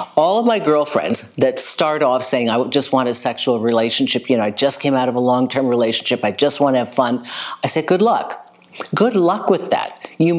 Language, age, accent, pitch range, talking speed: English, 50-69, American, 120-145 Hz, 230 wpm